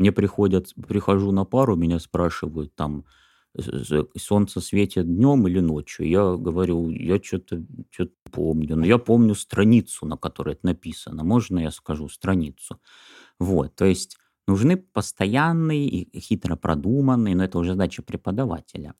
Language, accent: Russian, native